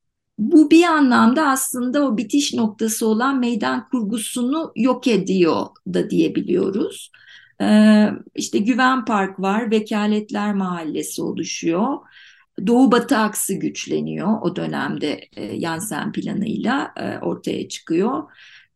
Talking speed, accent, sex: 110 wpm, native, female